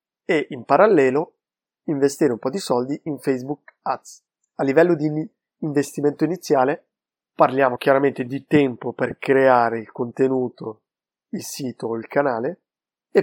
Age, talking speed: 20-39, 135 wpm